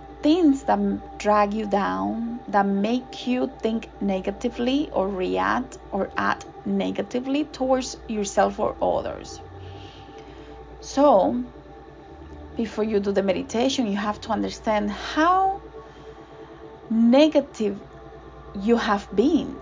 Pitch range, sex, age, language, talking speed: 200-265 Hz, female, 20-39, English, 105 wpm